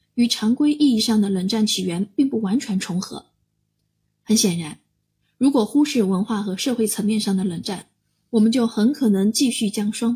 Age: 20-39